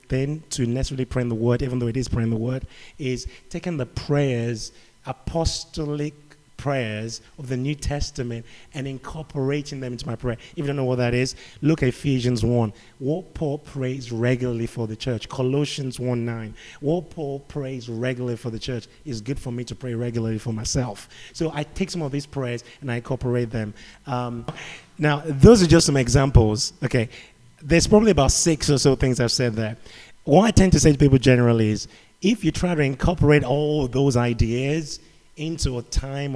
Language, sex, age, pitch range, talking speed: English, male, 30-49, 120-150 Hz, 195 wpm